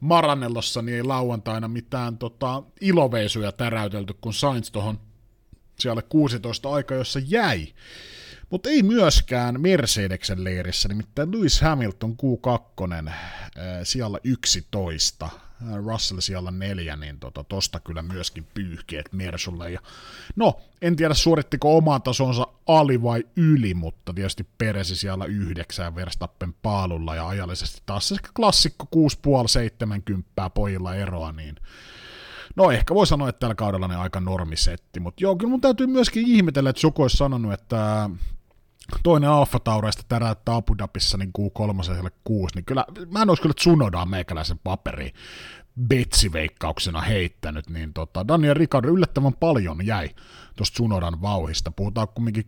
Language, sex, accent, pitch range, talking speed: Finnish, male, native, 90-130 Hz, 135 wpm